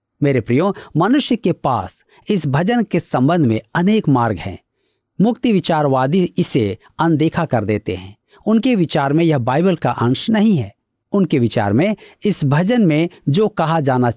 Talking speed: 160 wpm